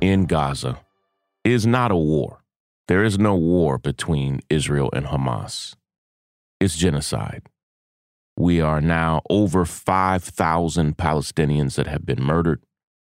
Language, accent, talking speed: English, American, 120 wpm